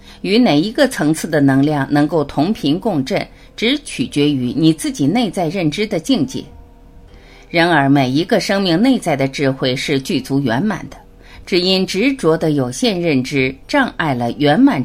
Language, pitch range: Chinese, 130-210 Hz